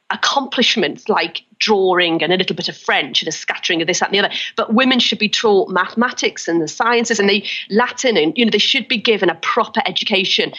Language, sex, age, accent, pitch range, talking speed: English, female, 40-59, British, 220-285 Hz, 225 wpm